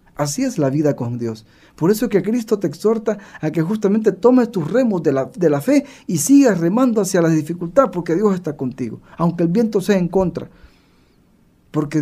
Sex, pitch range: male, 120-195 Hz